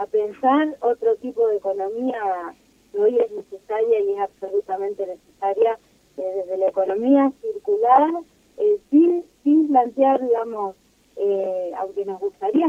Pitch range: 210-290 Hz